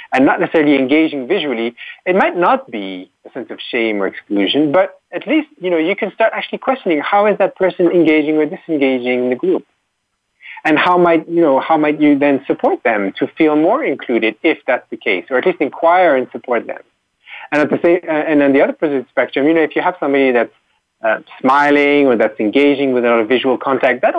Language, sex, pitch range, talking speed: English, male, 125-175 Hz, 220 wpm